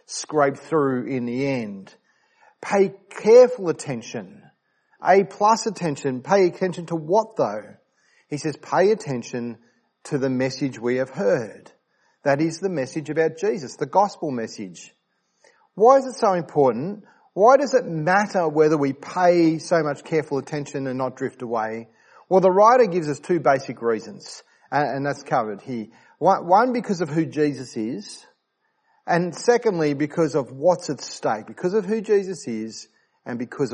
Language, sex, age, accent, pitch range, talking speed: English, male, 40-59, Australian, 130-185 Hz, 155 wpm